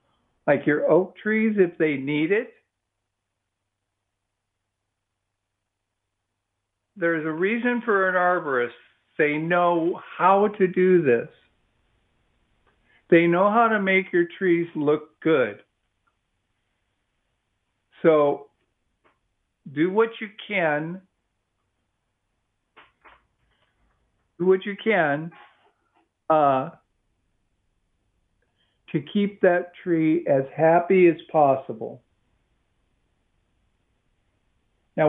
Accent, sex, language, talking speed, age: American, male, English, 80 wpm, 50-69